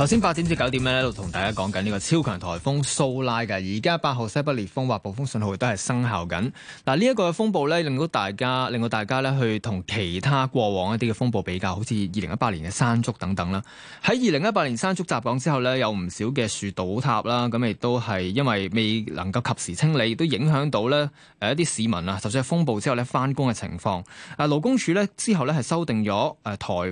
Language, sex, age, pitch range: Chinese, male, 20-39, 105-145 Hz